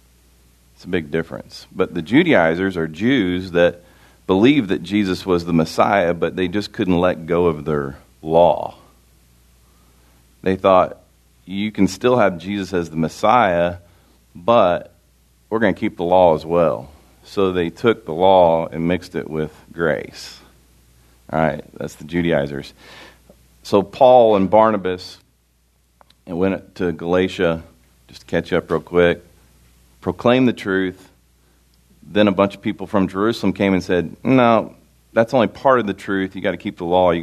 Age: 40-59